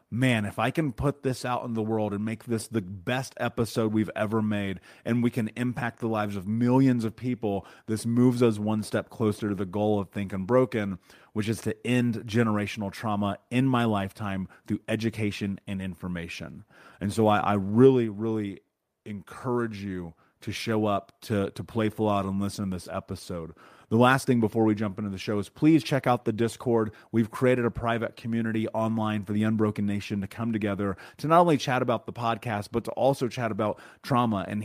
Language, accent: English, American